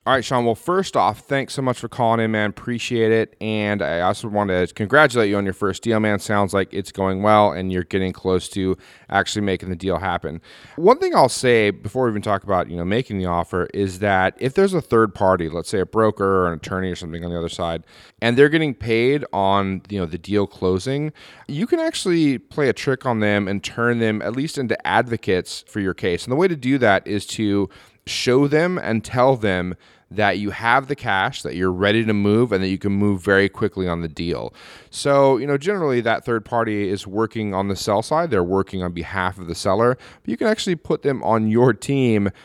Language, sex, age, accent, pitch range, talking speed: English, male, 30-49, American, 95-120 Hz, 235 wpm